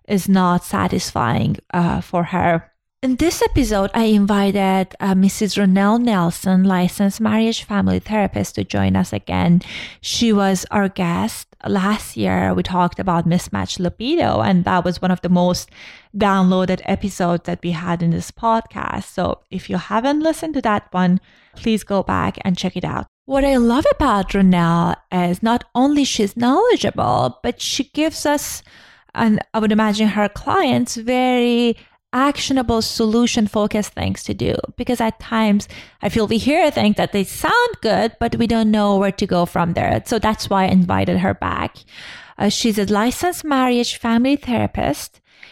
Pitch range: 185-240 Hz